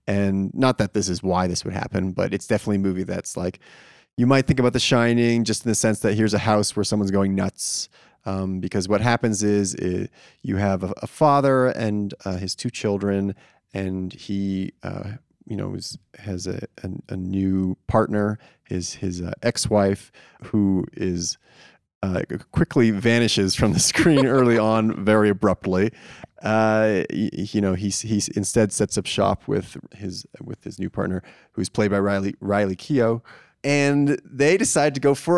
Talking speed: 180 wpm